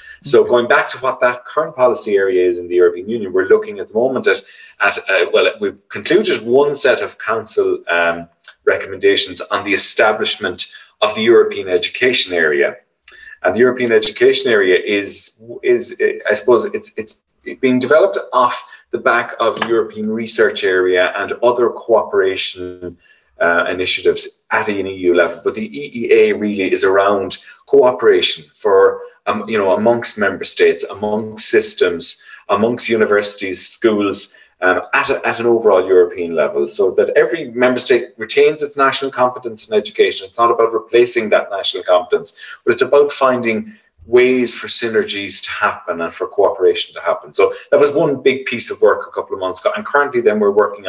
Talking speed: 170 wpm